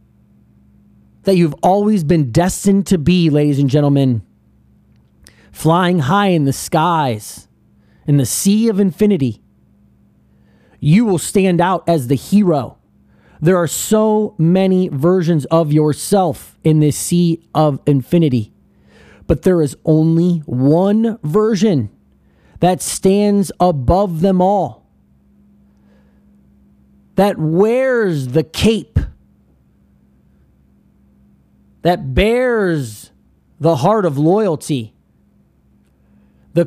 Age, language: 30-49, English